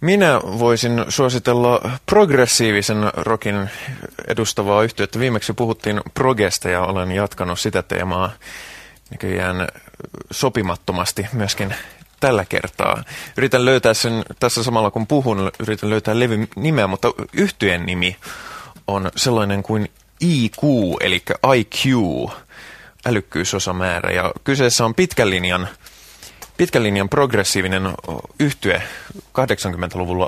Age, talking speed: 20-39, 105 wpm